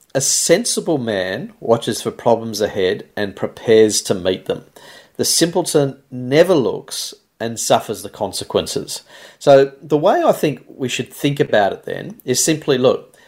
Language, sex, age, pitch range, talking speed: English, male, 40-59, 105-145 Hz, 155 wpm